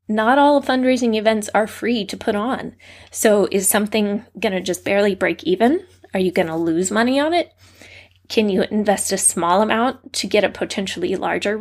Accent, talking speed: American, 180 wpm